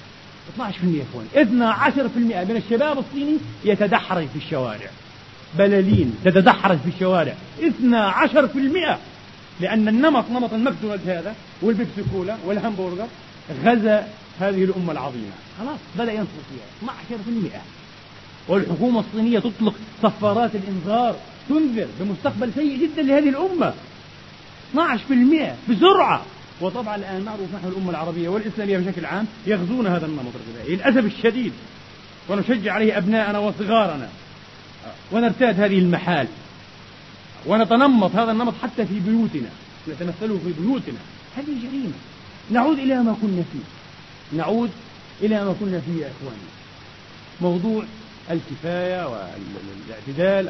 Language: Arabic